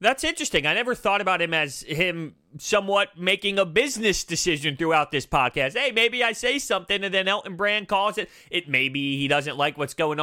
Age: 30-49